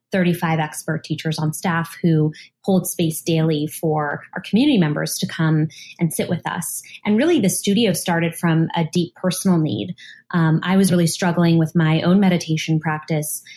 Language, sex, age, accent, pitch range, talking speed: English, female, 20-39, American, 160-195 Hz, 175 wpm